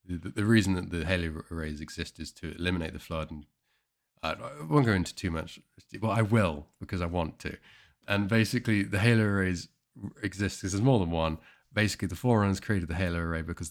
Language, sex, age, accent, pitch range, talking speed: English, male, 30-49, British, 85-105 Hz, 195 wpm